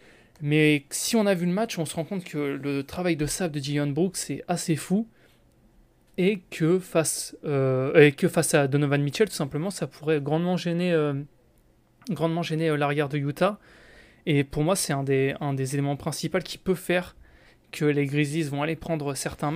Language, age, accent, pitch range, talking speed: French, 20-39, French, 140-170 Hz, 180 wpm